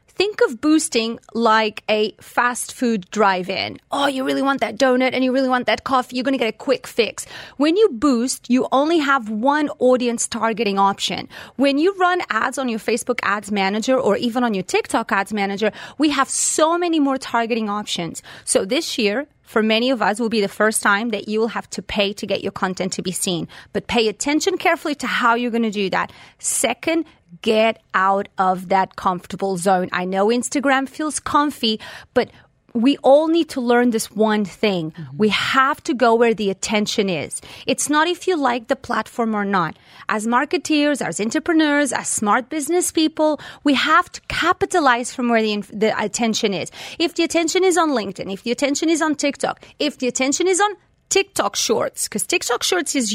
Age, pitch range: 30-49, 215-295 Hz